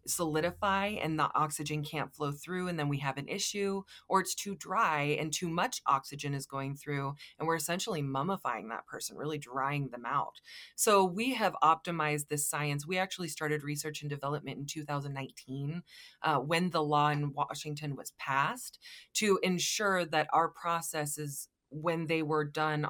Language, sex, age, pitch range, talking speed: English, female, 20-39, 145-175 Hz, 170 wpm